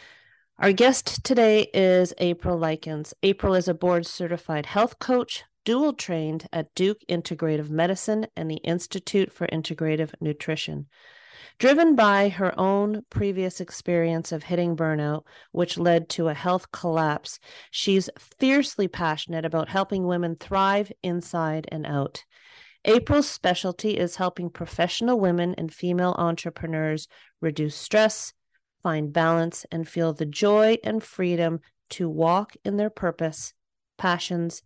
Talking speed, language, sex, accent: 130 wpm, English, female, American